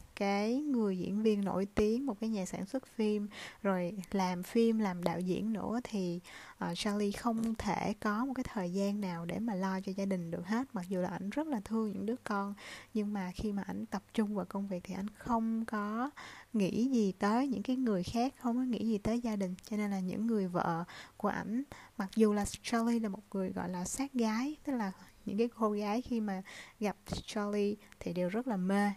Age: 20-39